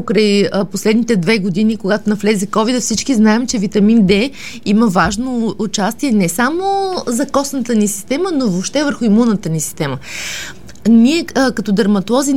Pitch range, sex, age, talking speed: 190-245 Hz, female, 20-39, 140 wpm